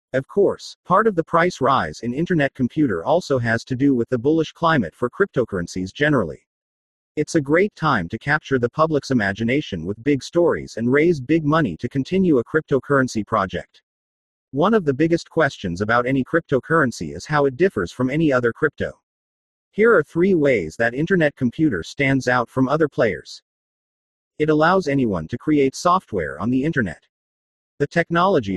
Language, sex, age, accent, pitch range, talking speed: English, male, 40-59, American, 120-155 Hz, 170 wpm